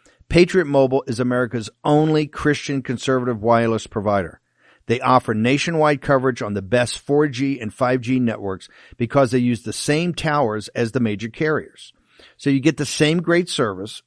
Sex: male